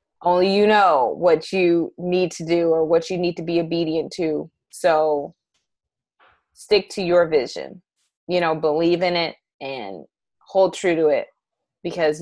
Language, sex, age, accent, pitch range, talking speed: English, female, 20-39, American, 165-190 Hz, 155 wpm